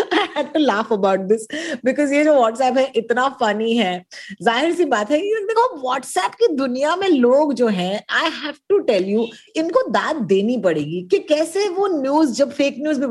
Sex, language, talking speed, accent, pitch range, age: female, Hindi, 110 wpm, native, 200-285 Hz, 20-39